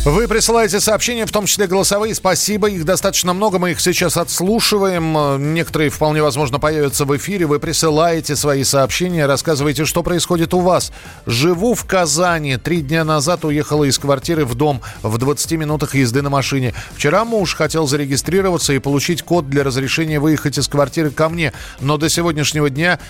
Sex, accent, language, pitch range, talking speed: male, native, Russian, 135-165 Hz, 170 wpm